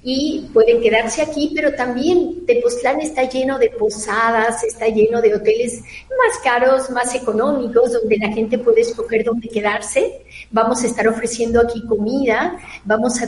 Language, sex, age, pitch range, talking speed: Spanish, female, 40-59, 215-265 Hz, 155 wpm